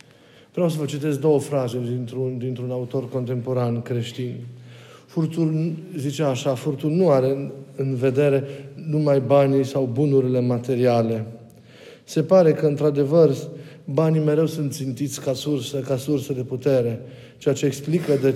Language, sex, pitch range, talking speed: Romanian, male, 130-150 Hz, 140 wpm